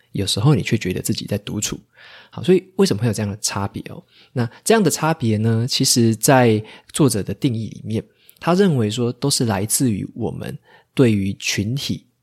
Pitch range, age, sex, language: 105-125 Hz, 20-39, male, Chinese